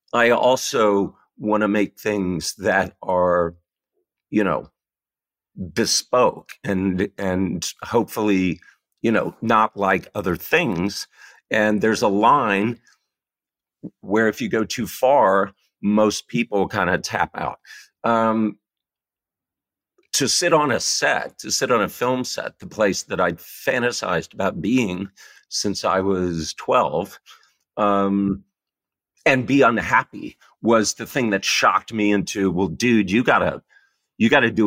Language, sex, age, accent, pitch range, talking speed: English, male, 50-69, American, 95-110 Hz, 140 wpm